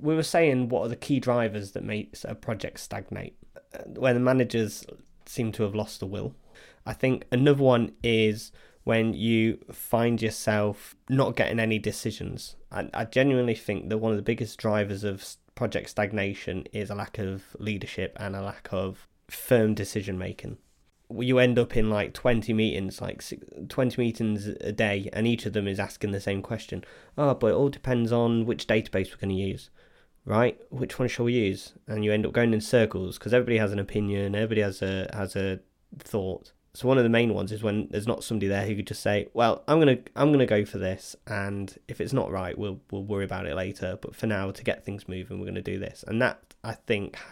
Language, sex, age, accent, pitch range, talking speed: English, male, 20-39, British, 100-120 Hz, 215 wpm